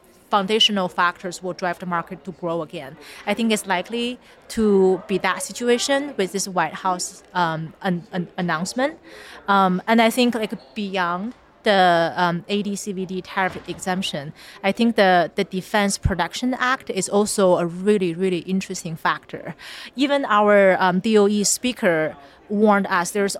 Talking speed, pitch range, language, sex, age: 150 wpm, 175-210 Hz, English, female, 30-49